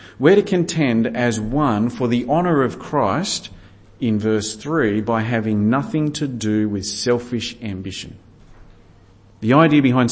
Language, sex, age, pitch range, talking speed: English, male, 40-59, 100-125 Hz, 140 wpm